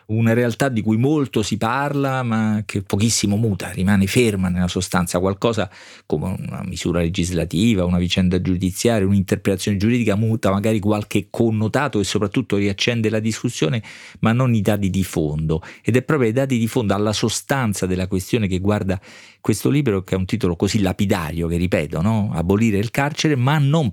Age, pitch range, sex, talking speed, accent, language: 40-59, 95-115 Hz, male, 170 wpm, native, Italian